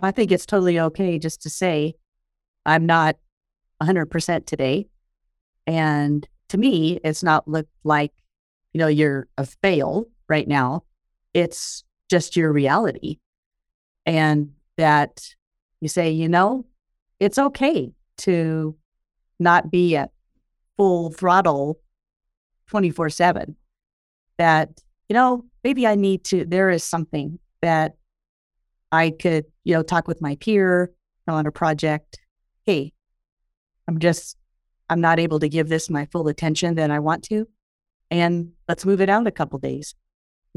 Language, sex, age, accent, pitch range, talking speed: English, female, 40-59, American, 145-175 Hz, 140 wpm